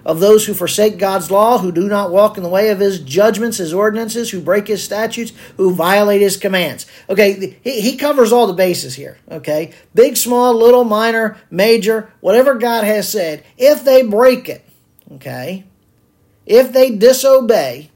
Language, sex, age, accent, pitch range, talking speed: English, male, 50-69, American, 160-215 Hz, 175 wpm